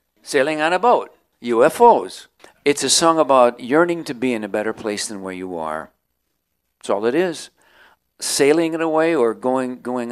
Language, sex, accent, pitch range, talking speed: English, male, American, 105-150 Hz, 180 wpm